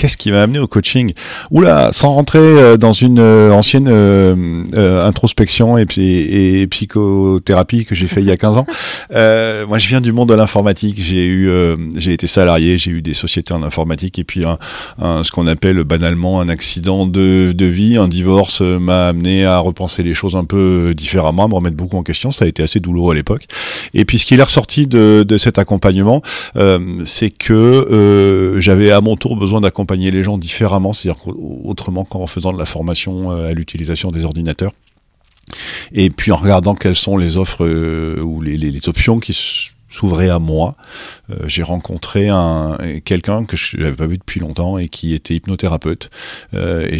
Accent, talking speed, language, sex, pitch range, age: French, 190 wpm, French, male, 85-105 Hz, 40-59